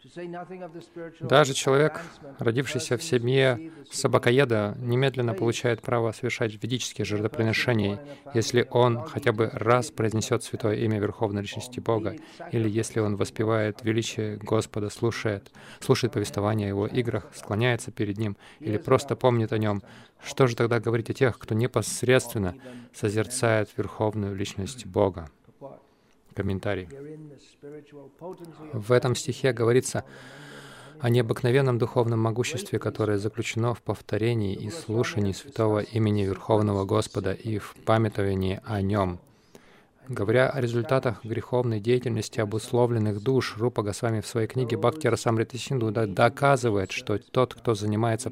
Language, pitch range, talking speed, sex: Russian, 105-125 Hz, 120 wpm, male